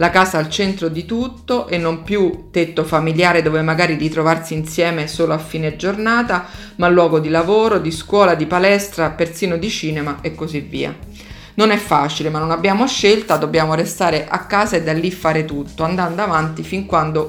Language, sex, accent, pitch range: Italian, female, native, 155-190 Hz